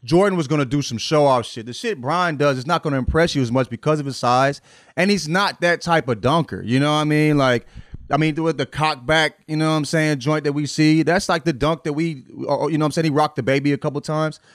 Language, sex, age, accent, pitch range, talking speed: English, male, 30-49, American, 120-155 Hz, 295 wpm